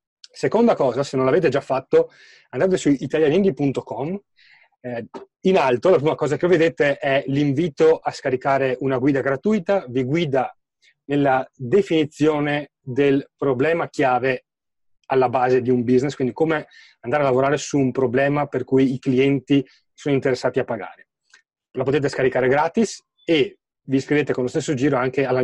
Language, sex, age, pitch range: Italian, male, 30-49, 130-155 Hz